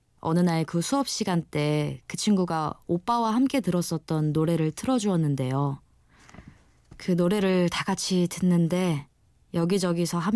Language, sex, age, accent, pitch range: Korean, female, 20-39, native, 155-205 Hz